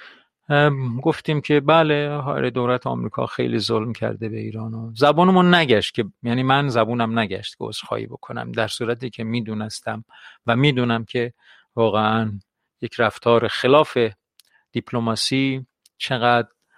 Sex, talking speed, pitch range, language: male, 120 wpm, 110-130 Hz, Persian